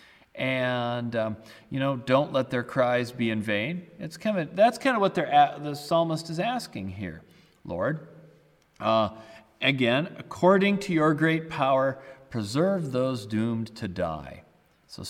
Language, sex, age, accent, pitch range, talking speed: English, male, 40-59, American, 100-150 Hz, 150 wpm